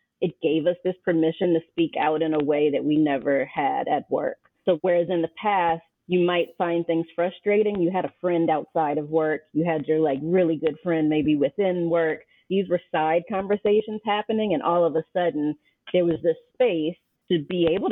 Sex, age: female, 30-49